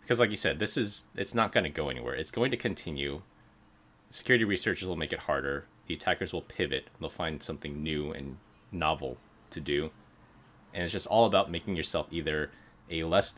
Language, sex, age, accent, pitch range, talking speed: English, male, 30-49, American, 80-105 Hz, 195 wpm